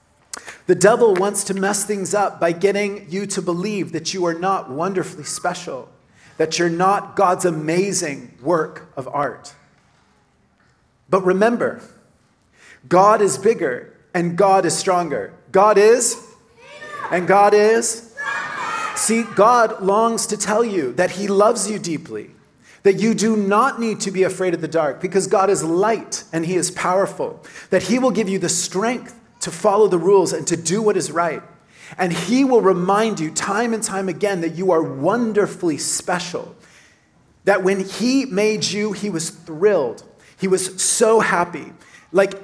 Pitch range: 170-210 Hz